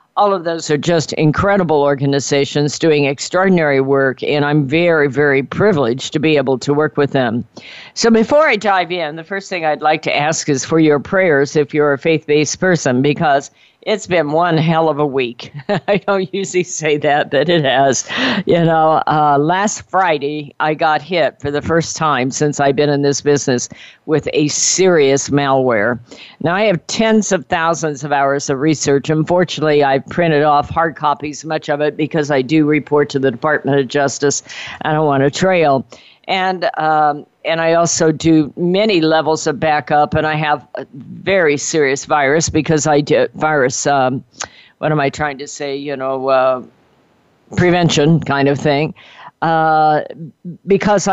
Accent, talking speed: American, 175 wpm